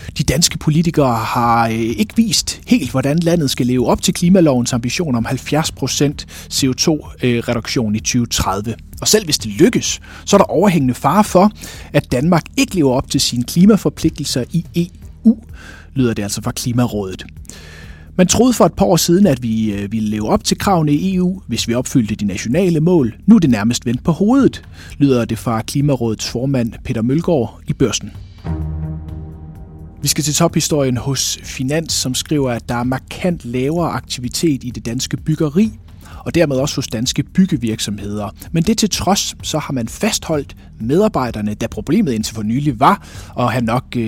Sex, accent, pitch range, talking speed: male, native, 110-160 Hz, 170 wpm